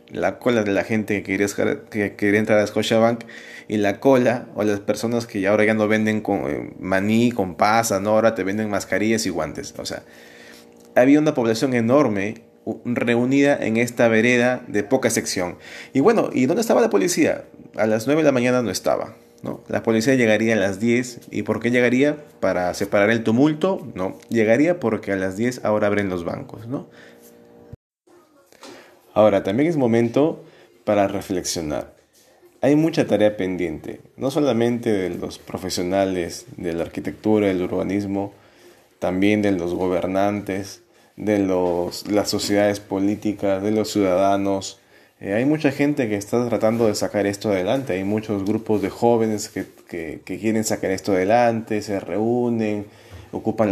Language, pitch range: English, 95-115 Hz